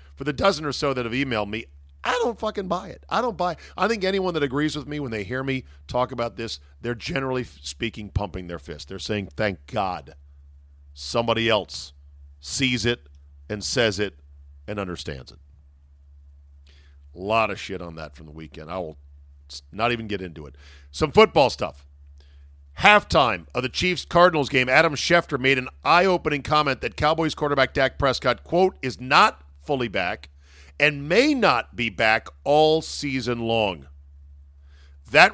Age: 50-69